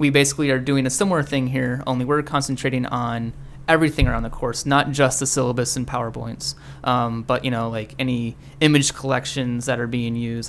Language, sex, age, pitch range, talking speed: English, male, 20-39, 125-140 Hz, 195 wpm